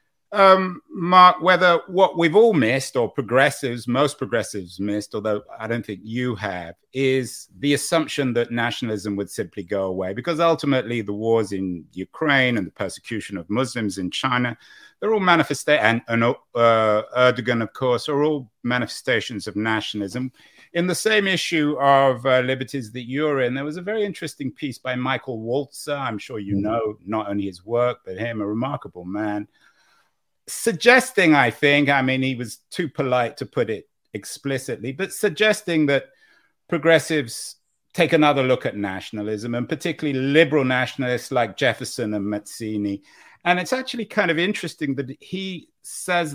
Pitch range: 115-160 Hz